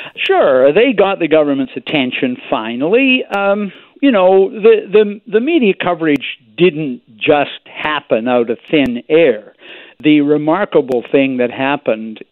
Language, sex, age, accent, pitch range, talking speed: English, male, 60-79, American, 125-195 Hz, 130 wpm